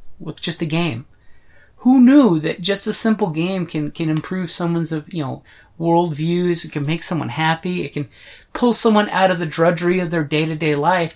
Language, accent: English, American